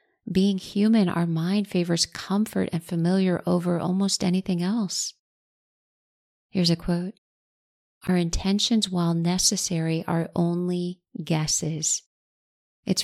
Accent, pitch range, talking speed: American, 165-190 Hz, 105 wpm